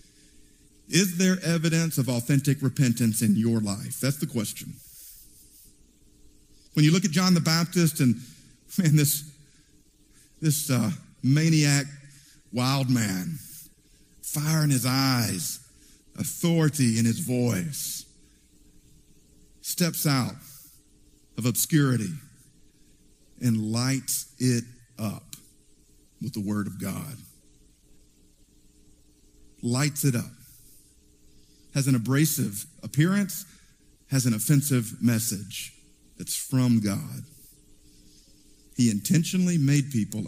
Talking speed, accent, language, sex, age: 100 wpm, American, English, male, 50-69